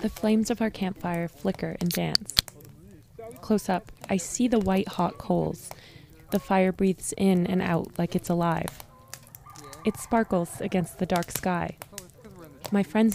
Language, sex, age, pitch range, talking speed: English, female, 20-39, 160-195 Hz, 150 wpm